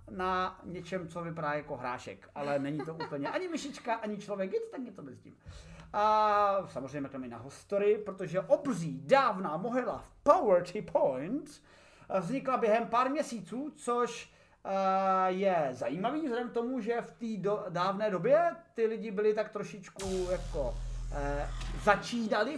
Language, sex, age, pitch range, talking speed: Czech, male, 30-49, 175-230 Hz, 145 wpm